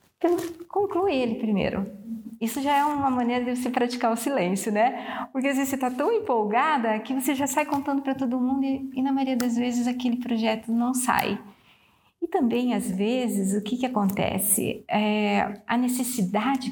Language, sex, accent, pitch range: Portuguese, female, Brazilian, 205-260 Hz